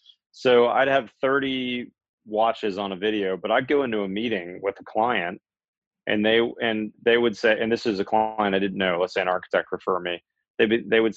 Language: English